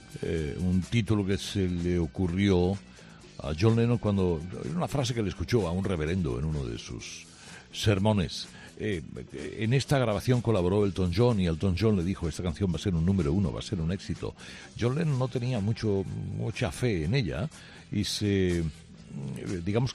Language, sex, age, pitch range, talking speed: Spanish, male, 60-79, 80-105 Hz, 185 wpm